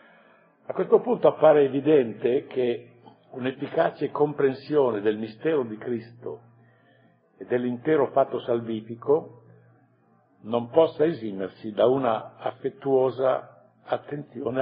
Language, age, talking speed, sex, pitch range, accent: Italian, 60-79, 95 wpm, male, 110-145 Hz, native